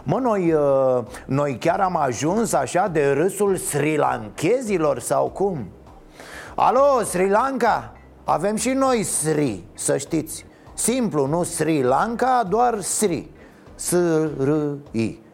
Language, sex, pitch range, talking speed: Romanian, male, 145-200 Hz, 110 wpm